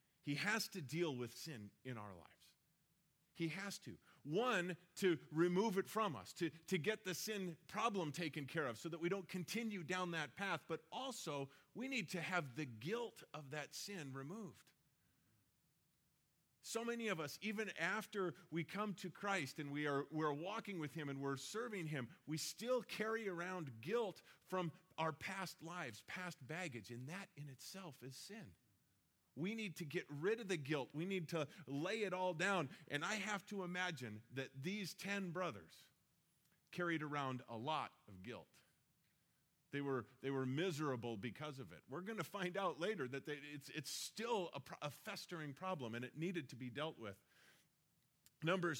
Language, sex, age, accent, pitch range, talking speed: English, male, 40-59, American, 140-185 Hz, 175 wpm